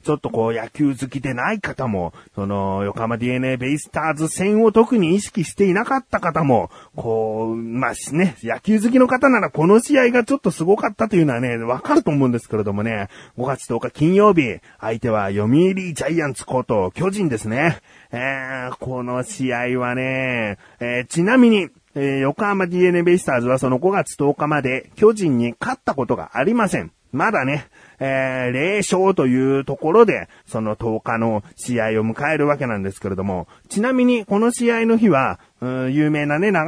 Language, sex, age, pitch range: Japanese, male, 30-49, 115-170 Hz